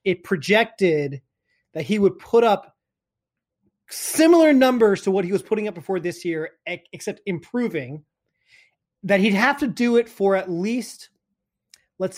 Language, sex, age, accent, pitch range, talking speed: English, male, 30-49, American, 175-240 Hz, 150 wpm